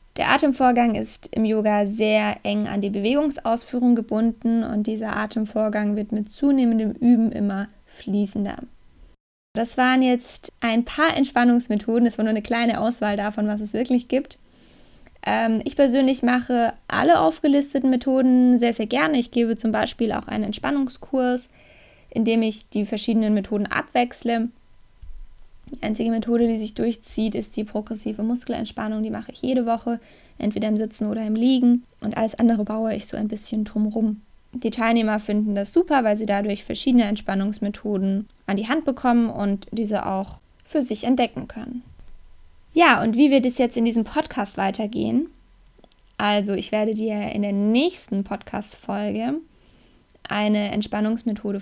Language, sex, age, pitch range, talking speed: German, female, 10-29, 210-245 Hz, 155 wpm